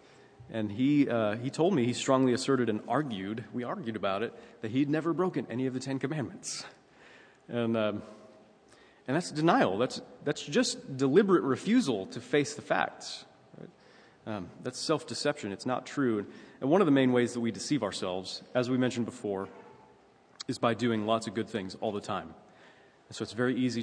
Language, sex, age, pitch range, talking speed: English, male, 30-49, 110-130 Hz, 190 wpm